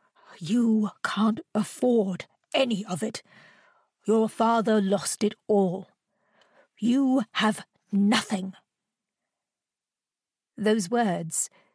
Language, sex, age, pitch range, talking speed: English, female, 50-69, 190-230 Hz, 80 wpm